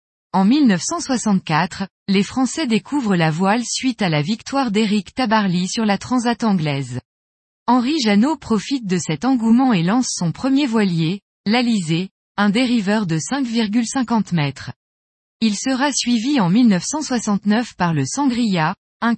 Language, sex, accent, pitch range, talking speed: French, female, French, 180-245 Hz, 135 wpm